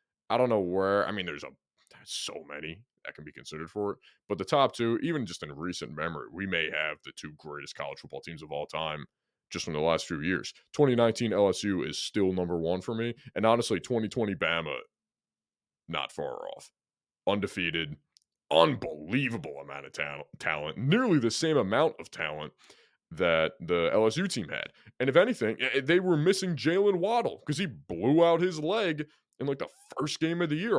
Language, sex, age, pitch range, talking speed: English, male, 20-39, 90-135 Hz, 185 wpm